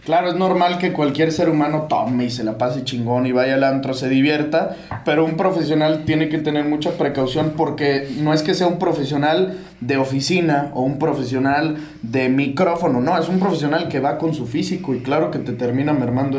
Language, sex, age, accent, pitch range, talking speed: English, male, 20-39, Mexican, 135-165 Hz, 205 wpm